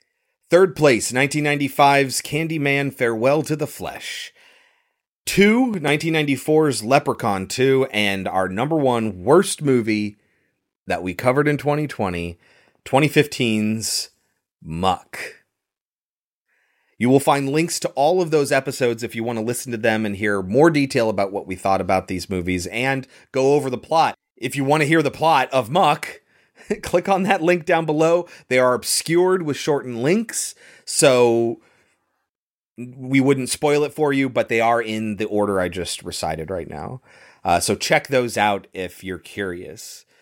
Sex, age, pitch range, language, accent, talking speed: male, 30-49, 110-150 Hz, English, American, 155 wpm